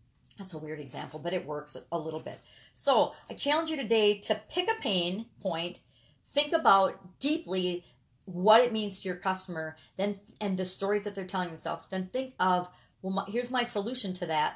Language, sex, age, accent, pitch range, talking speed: English, female, 40-59, American, 175-220 Hz, 190 wpm